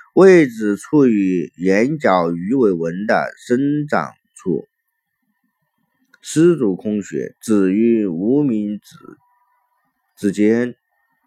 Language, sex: Chinese, male